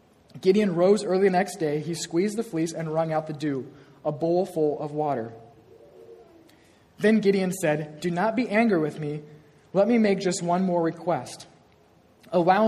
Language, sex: English, male